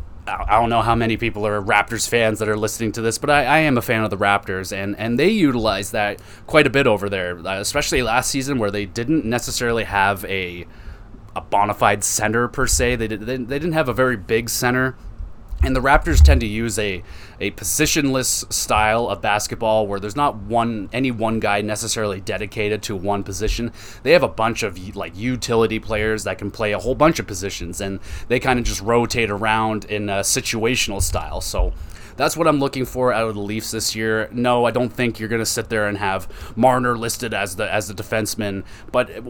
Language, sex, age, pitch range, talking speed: English, male, 20-39, 100-120 Hz, 210 wpm